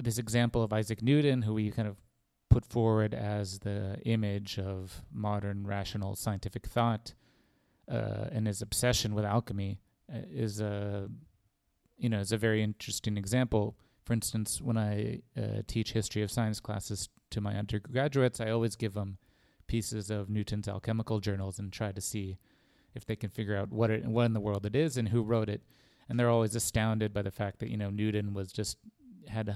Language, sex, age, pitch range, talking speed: English, male, 30-49, 100-115 Hz, 190 wpm